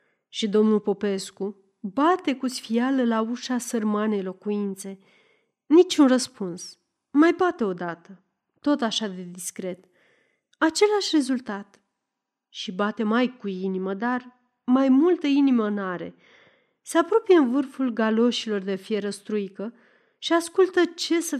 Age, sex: 30-49, female